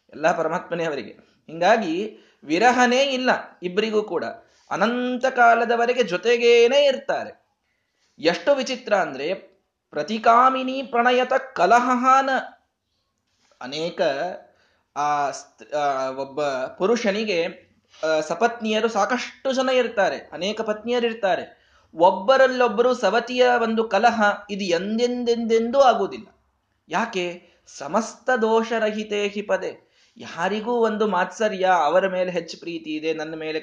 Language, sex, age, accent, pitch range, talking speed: Kannada, male, 20-39, native, 170-240 Hz, 85 wpm